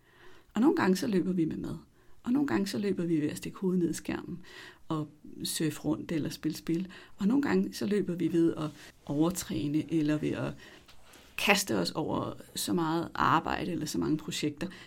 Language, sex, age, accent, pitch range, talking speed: Danish, female, 60-79, native, 155-200 Hz, 200 wpm